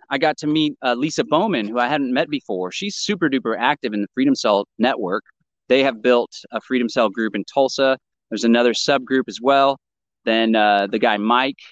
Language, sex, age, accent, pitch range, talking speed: English, male, 30-49, American, 110-145 Hz, 205 wpm